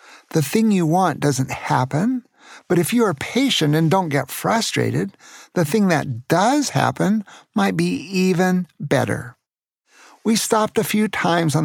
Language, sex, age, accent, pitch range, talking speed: English, male, 50-69, American, 140-180 Hz, 155 wpm